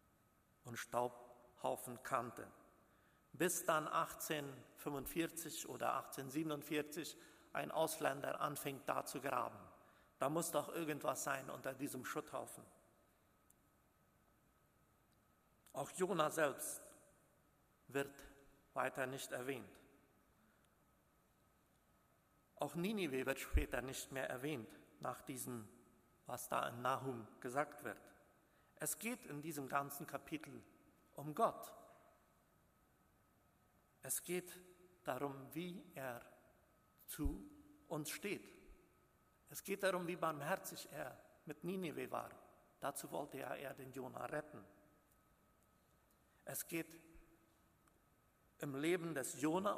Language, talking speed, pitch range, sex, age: German, 100 wpm, 135-170 Hz, male, 50-69